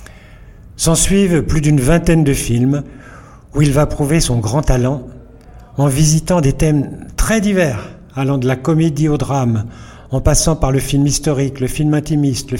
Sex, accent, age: male, French, 50-69